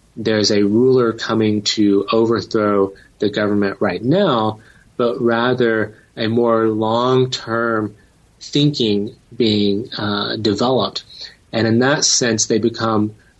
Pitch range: 100-120 Hz